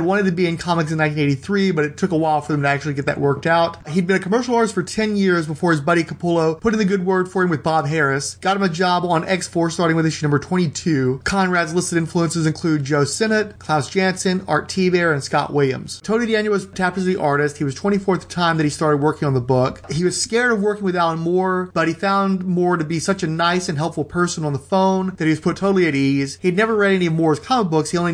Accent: American